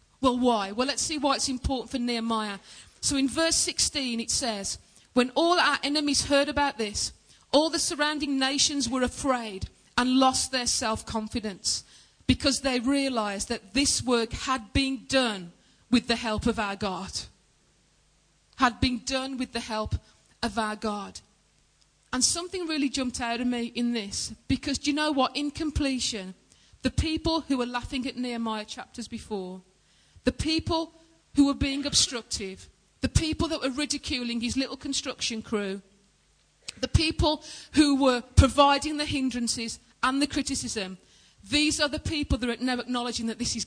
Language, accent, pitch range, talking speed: English, British, 225-280 Hz, 160 wpm